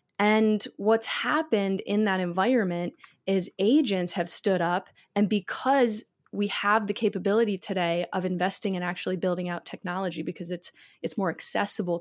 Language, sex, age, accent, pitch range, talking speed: English, female, 20-39, American, 180-220 Hz, 155 wpm